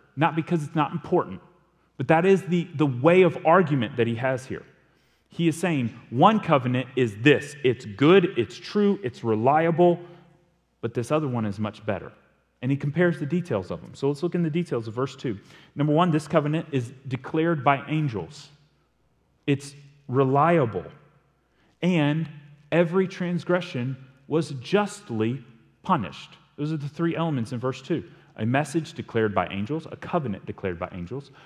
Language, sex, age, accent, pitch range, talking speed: English, male, 30-49, American, 125-165 Hz, 165 wpm